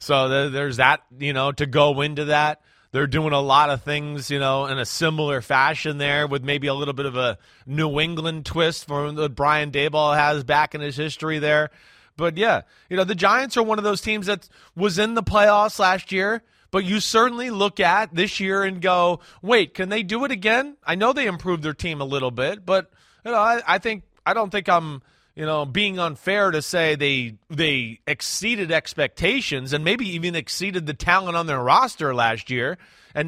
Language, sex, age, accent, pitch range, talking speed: English, male, 30-49, American, 145-195 Hz, 210 wpm